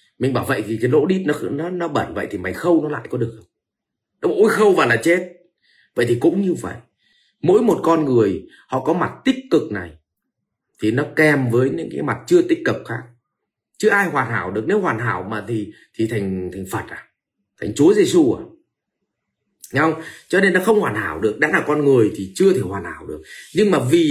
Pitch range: 110-170 Hz